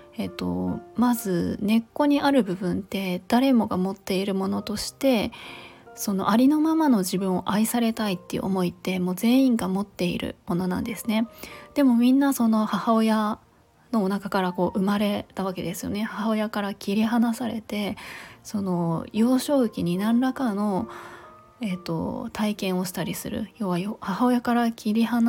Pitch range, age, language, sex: 190-240 Hz, 20-39, Japanese, female